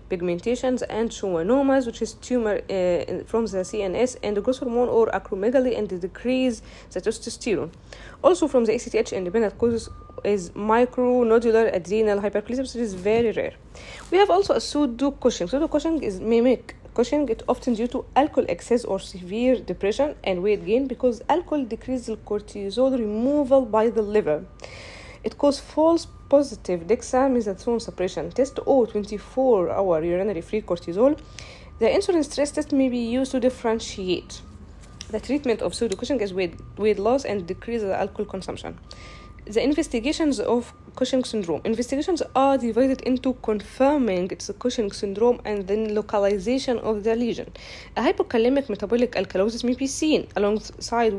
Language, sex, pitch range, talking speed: English, female, 205-260 Hz, 155 wpm